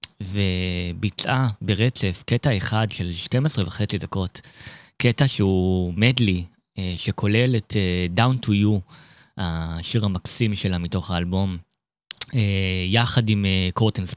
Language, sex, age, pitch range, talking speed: Hebrew, male, 20-39, 90-115 Hz, 100 wpm